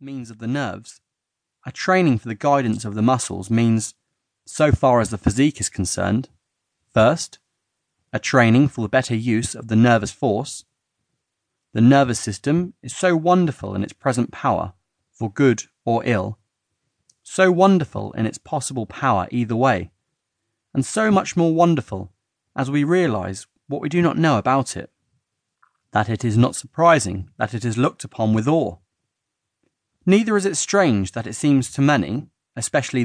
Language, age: English, 30-49